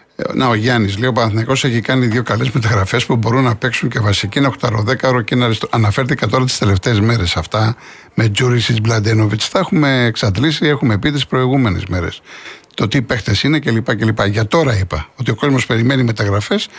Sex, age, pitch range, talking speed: male, 60-79, 115-145 Hz, 195 wpm